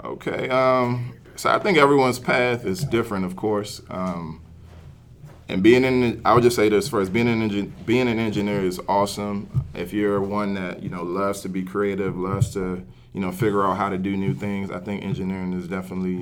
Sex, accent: male, American